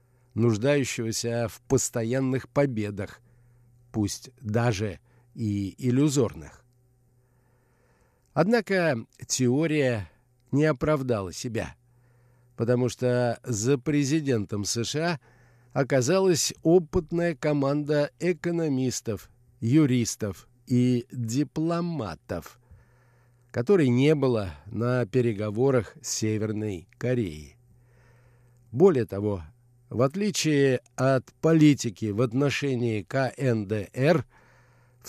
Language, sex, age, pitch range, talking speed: Russian, male, 50-69, 120-145 Hz, 75 wpm